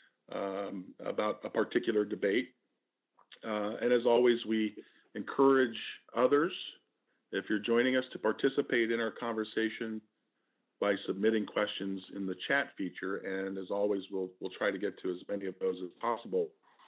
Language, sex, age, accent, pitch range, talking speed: English, male, 40-59, American, 105-135 Hz, 155 wpm